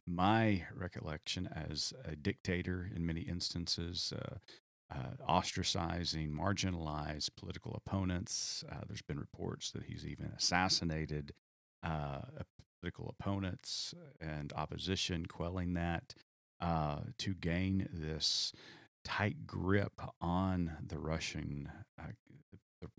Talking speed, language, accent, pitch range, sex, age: 105 wpm, English, American, 80-95 Hz, male, 40-59